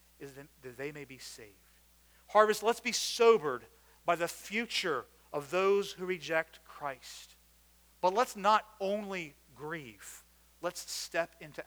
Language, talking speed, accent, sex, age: English, 135 wpm, American, male, 40-59